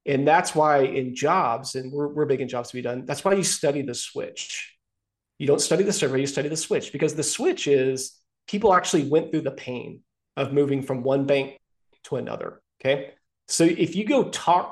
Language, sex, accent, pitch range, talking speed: English, male, American, 130-170 Hz, 210 wpm